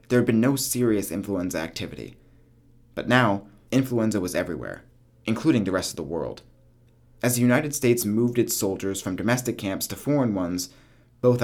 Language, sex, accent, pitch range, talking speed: English, male, American, 95-125 Hz, 170 wpm